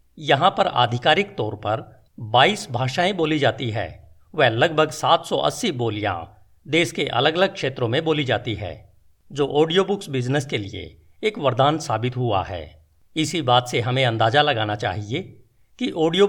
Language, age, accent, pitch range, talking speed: Hindi, 50-69, native, 110-160 Hz, 160 wpm